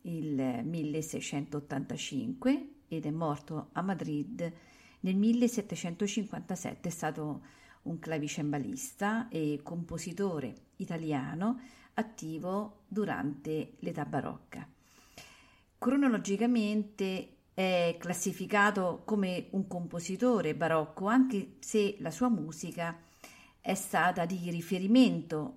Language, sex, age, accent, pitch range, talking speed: Italian, female, 50-69, native, 160-215 Hz, 85 wpm